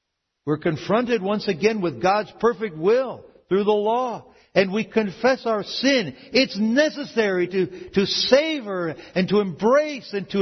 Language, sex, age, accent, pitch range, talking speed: English, male, 60-79, American, 175-240 Hz, 150 wpm